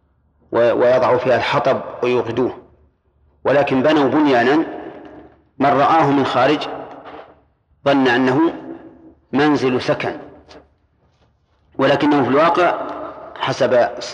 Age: 40-59